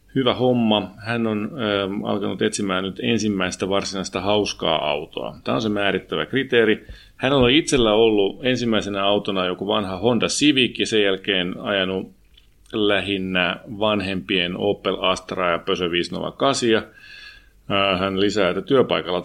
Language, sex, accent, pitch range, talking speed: Finnish, male, native, 95-115 Hz, 130 wpm